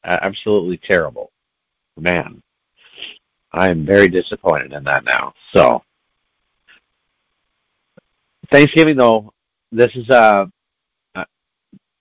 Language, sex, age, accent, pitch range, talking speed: English, male, 50-69, American, 100-140 Hz, 80 wpm